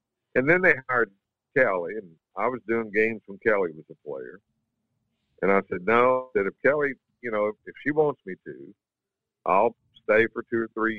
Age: 50-69